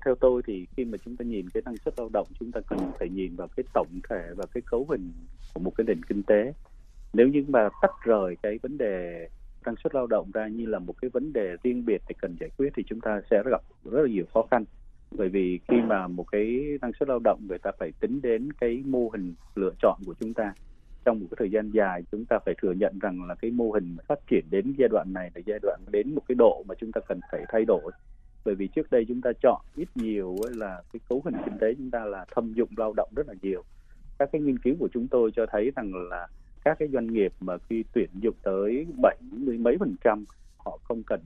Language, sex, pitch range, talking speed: Vietnamese, male, 95-125 Hz, 260 wpm